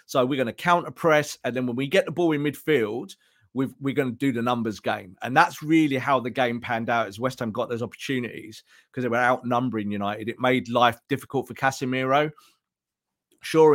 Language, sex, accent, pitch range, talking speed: English, male, British, 120-155 Hz, 210 wpm